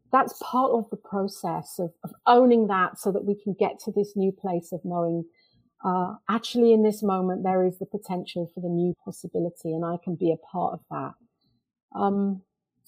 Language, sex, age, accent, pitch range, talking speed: English, female, 40-59, British, 180-225 Hz, 195 wpm